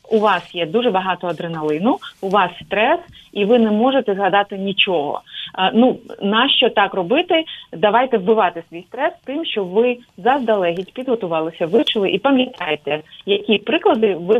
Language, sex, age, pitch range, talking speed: Ukrainian, female, 30-49, 190-245 Hz, 145 wpm